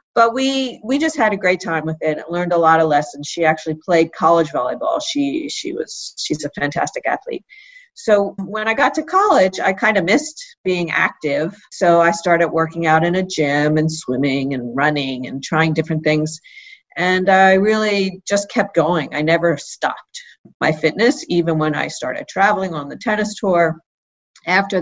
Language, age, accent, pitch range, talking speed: English, 50-69, American, 155-200 Hz, 185 wpm